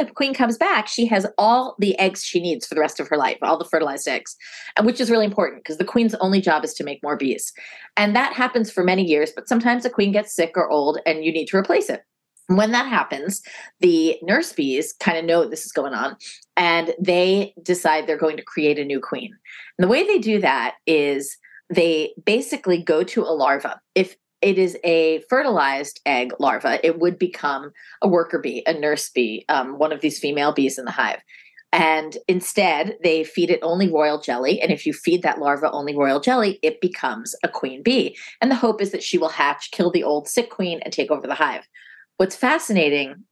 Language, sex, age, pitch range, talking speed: English, female, 30-49, 155-220 Hz, 220 wpm